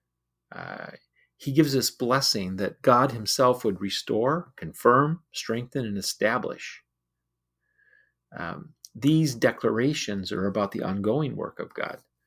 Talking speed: 115 wpm